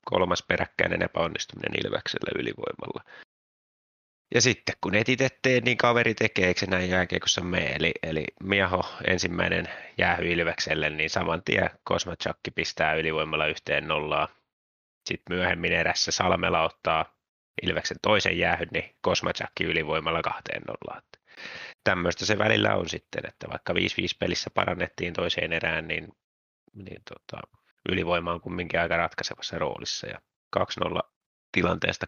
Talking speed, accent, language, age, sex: 125 wpm, native, Finnish, 30-49, male